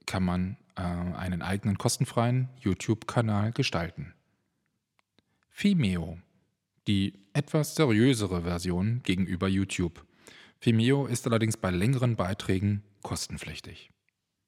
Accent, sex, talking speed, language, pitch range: German, male, 90 wpm, German, 90-120 Hz